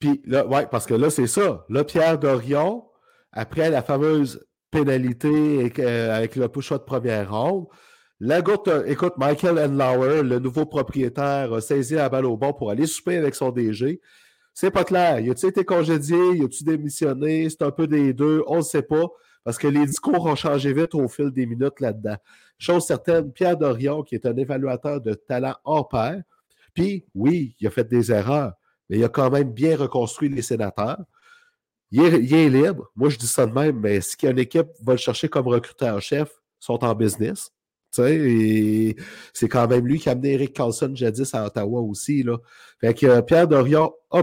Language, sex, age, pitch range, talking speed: French, male, 50-69, 125-155 Hz, 200 wpm